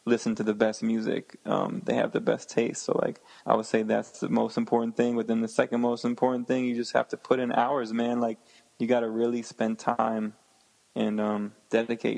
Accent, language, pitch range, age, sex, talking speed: American, English, 110-120 Hz, 20-39, male, 220 wpm